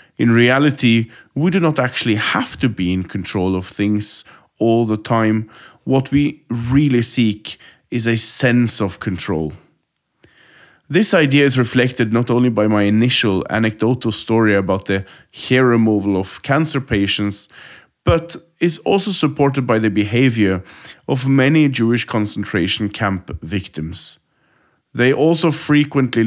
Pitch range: 105-135 Hz